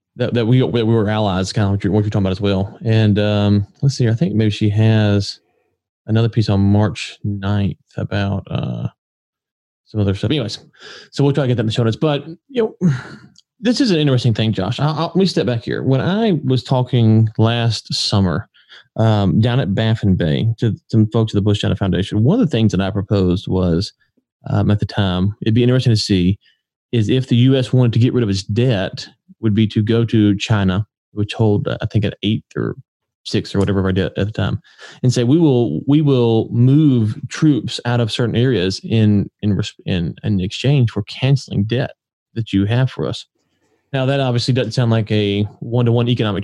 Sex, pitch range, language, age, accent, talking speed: male, 105-125 Hz, English, 20-39, American, 215 wpm